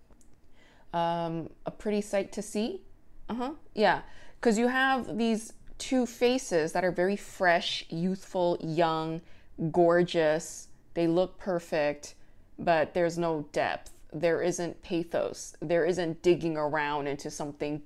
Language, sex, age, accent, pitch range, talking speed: English, female, 20-39, American, 155-195 Hz, 130 wpm